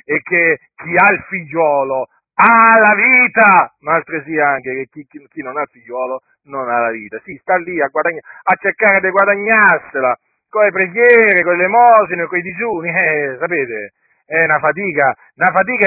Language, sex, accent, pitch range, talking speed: Italian, male, native, 170-220 Hz, 190 wpm